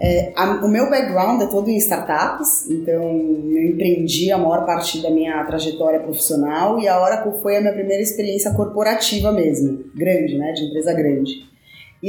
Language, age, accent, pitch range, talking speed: Portuguese, 20-39, Brazilian, 175-235 Hz, 180 wpm